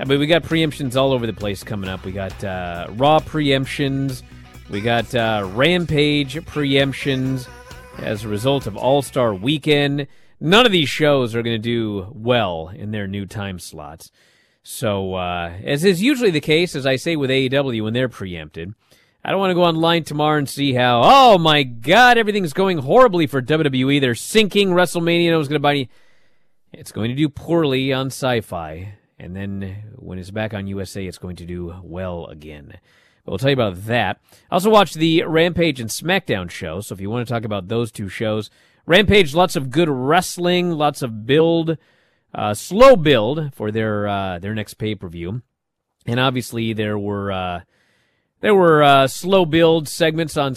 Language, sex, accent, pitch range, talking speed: English, male, American, 105-155 Hz, 185 wpm